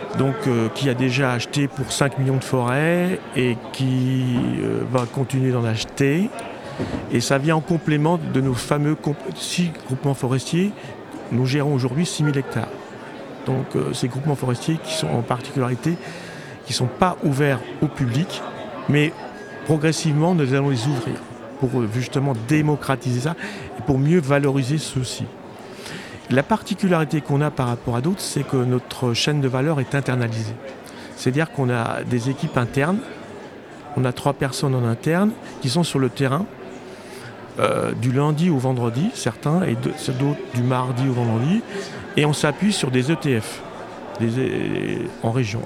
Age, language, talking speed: 50-69, French, 160 wpm